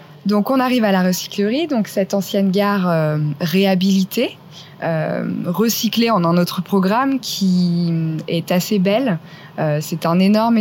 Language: French